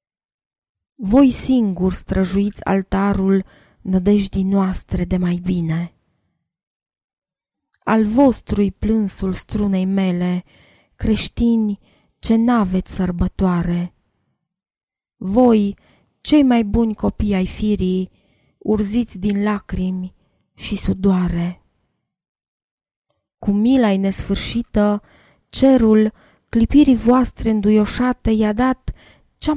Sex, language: female, Romanian